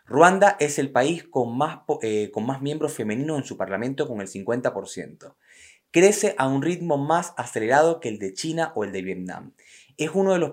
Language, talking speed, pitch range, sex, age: Spanish, 200 wpm, 105-145 Hz, male, 20-39